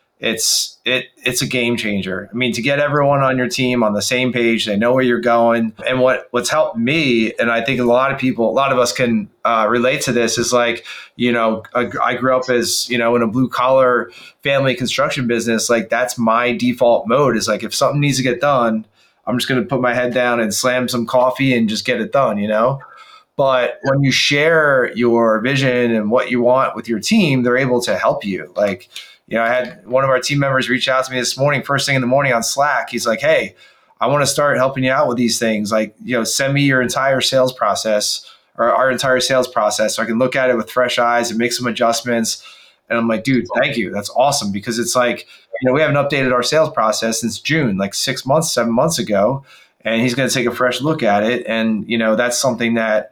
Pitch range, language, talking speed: 115-130 Hz, English, 245 wpm